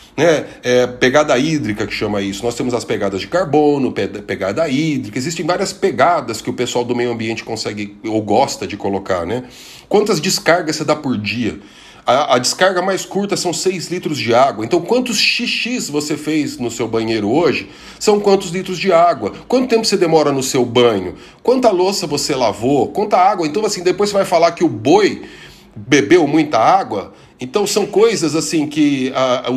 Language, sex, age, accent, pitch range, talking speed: Portuguese, male, 40-59, Brazilian, 125-185 Hz, 185 wpm